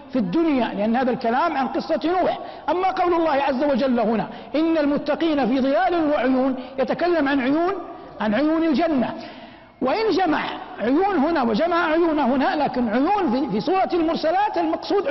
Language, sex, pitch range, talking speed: Arabic, male, 265-340 Hz, 155 wpm